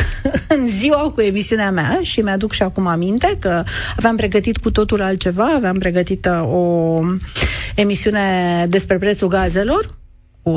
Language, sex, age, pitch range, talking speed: Romanian, female, 30-49, 180-240 Hz, 135 wpm